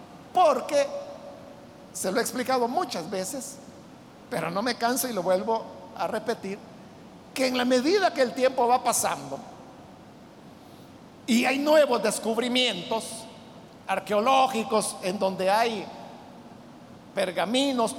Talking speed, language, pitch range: 115 wpm, Spanish, 195-270 Hz